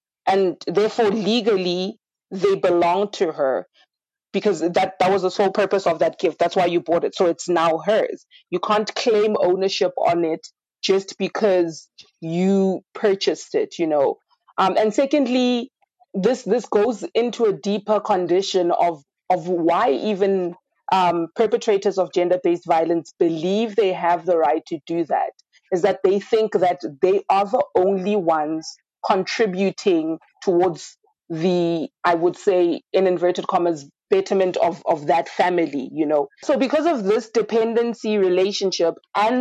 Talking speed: 150 wpm